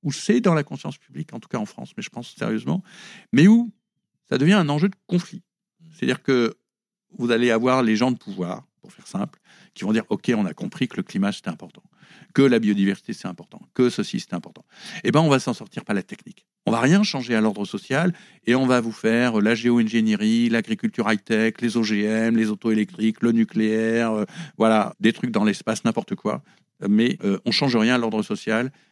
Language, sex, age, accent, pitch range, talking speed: French, male, 50-69, French, 110-165 Hz, 220 wpm